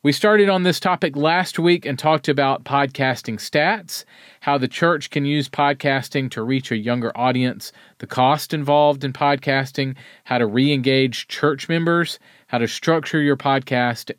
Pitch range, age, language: 125-160 Hz, 40-59, English